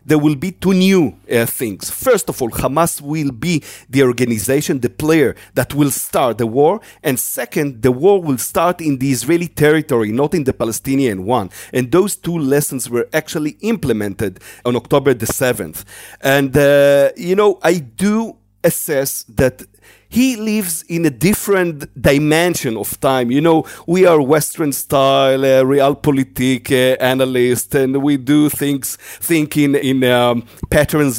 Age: 40-59